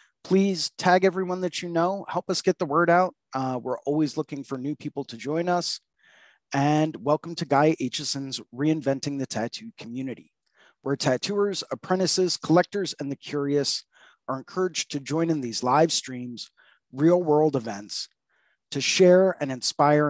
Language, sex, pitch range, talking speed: English, male, 135-175 Hz, 155 wpm